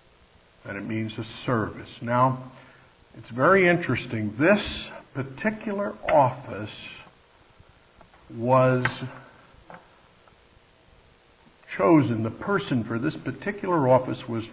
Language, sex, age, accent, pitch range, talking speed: English, male, 60-79, American, 115-150 Hz, 85 wpm